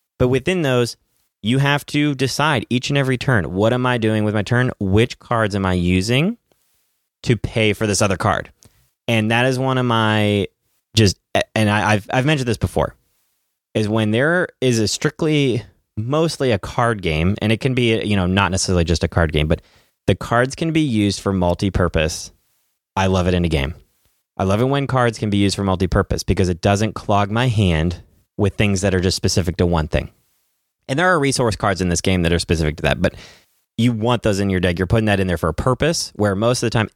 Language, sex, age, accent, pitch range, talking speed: English, male, 30-49, American, 95-120 Hz, 220 wpm